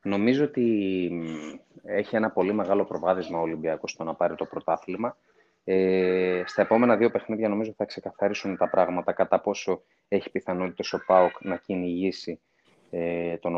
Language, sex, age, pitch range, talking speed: Greek, male, 30-49, 95-120 Hz, 150 wpm